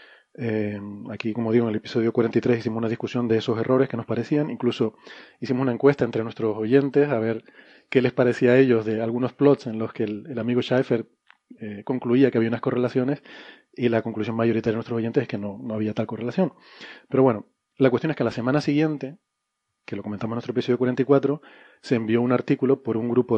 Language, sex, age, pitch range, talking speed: Spanish, male, 30-49, 115-130 Hz, 215 wpm